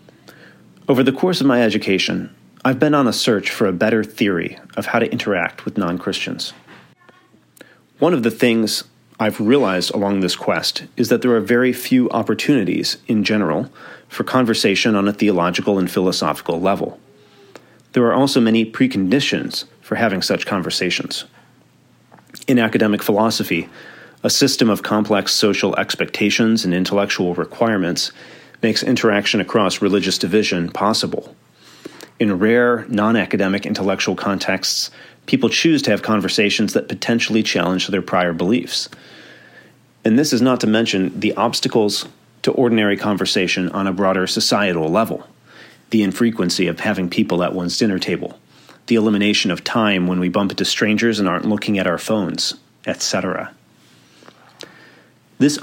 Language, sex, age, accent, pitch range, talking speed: English, male, 30-49, American, 95-115 Hz, 145 wpm